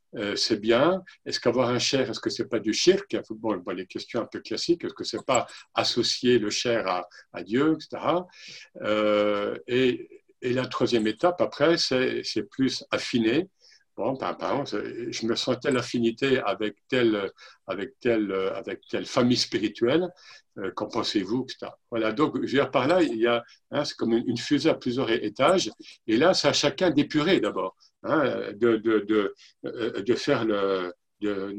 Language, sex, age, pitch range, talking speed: French, male, 60-79, 115-175 Hz, 180 wpm